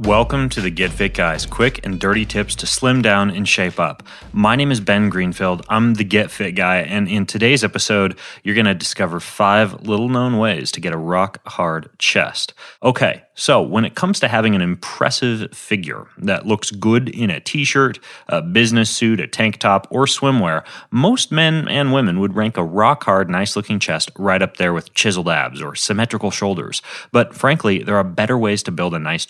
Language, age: English, 30-49